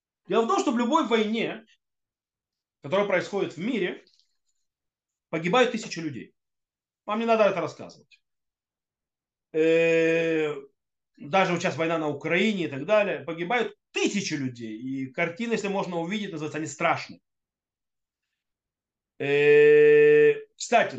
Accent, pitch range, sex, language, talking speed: native, 155-215 Hz, male, Russian, 110 wpm